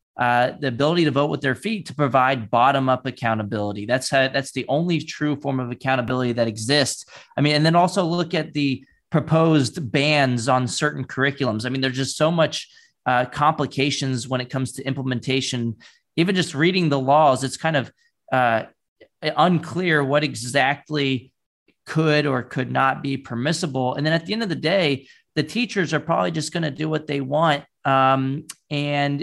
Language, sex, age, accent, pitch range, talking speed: English, male, 30-49, American, 125-150 Hz, 180 wpm